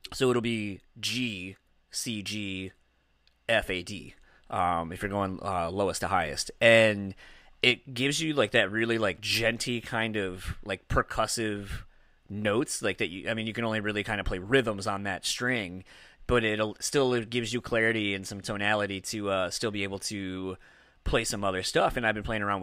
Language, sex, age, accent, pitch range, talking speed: English, male, 30-49, American, 95-110 Hz, 195 wpm